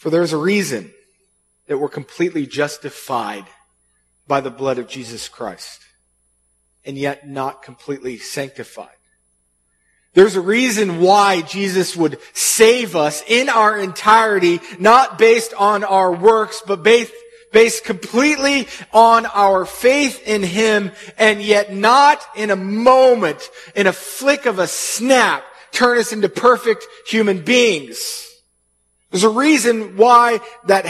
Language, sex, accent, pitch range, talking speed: English, male, American, 150-235 Hz, 130 wpm